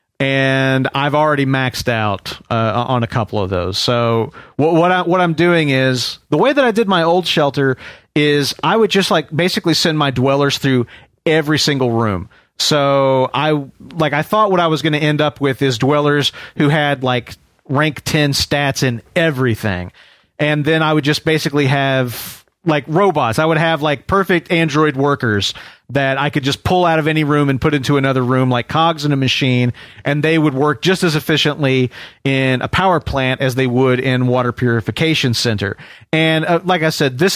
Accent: American